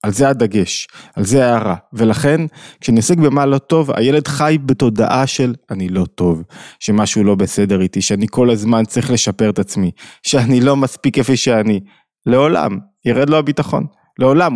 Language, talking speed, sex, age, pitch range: Hebrew, 165 wpm, male, 20-39, 115-150 Hz